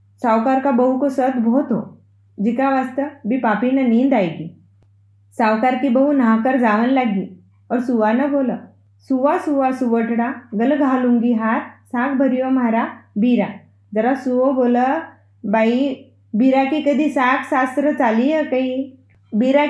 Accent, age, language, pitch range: native, 20-39, Hindi, 210-275 Hz